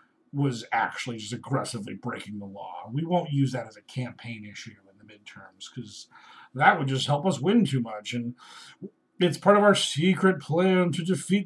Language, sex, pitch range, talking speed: English, male, 125-190 Hz, 190 wpm